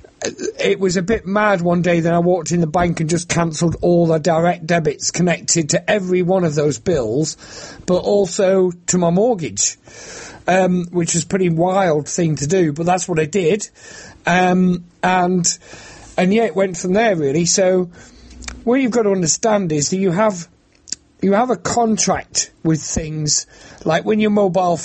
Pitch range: 140-180 Hz